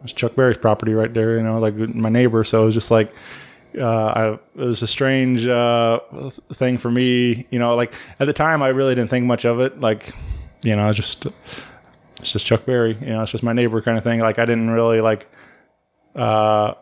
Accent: American